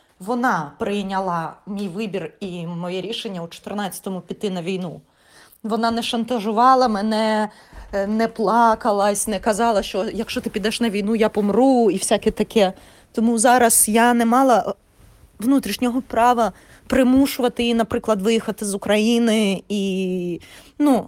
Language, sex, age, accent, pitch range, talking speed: Ukrainian, female, 20-39, native, 200-245 Hz, 130 wpm